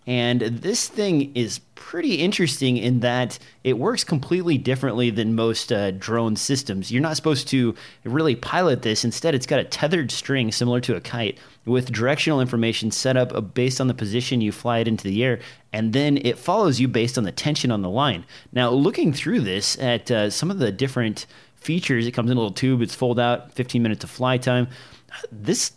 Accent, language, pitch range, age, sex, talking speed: American, English, 115-140 Hz, 30-49, male, 205 wpm